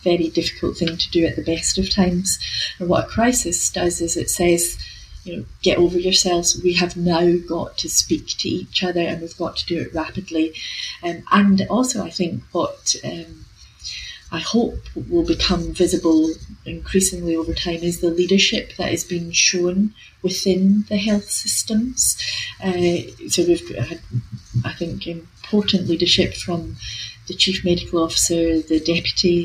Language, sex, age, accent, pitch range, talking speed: English, female, 30-49, British, 155-185 Hz, 165 wpm